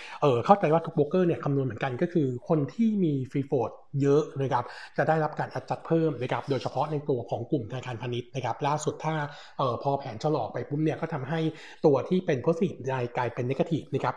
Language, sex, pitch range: Thai, male, 125-155 Hz